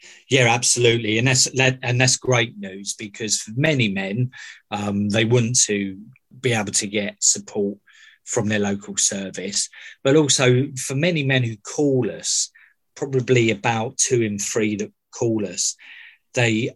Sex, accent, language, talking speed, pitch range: male, British, English, 145 wpm, 105-130 Hz